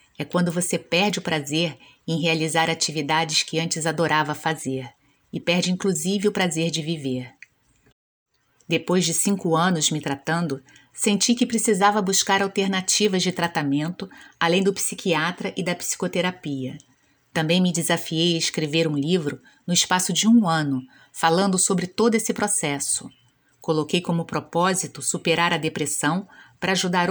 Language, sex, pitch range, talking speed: Portuguese, female, 155-190 Hz, 140 wpm